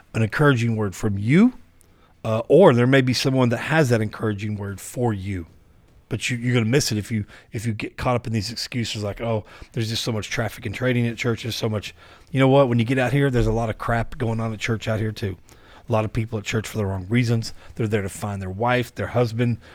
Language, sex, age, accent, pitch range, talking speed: English, male, 40-59, American, 105-120 Hz, 265 wpm